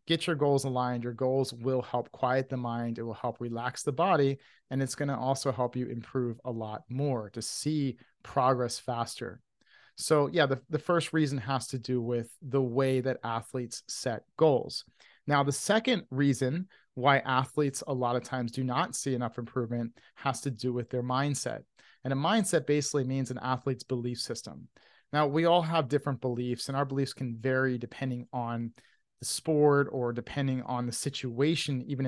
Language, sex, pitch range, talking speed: English, male, 125-140 Hz, 185 wpm